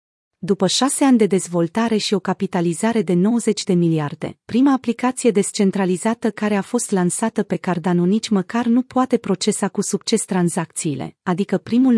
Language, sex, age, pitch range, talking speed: Romanian, female, 30-49, 180-225 Hz, 155 wpm